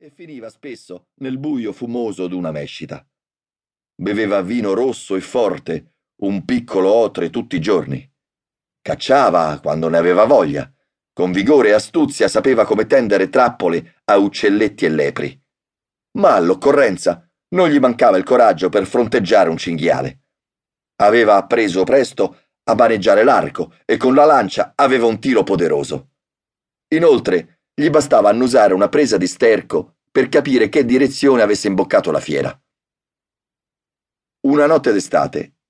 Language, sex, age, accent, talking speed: Italian, male, 40-59, native, 135 wpm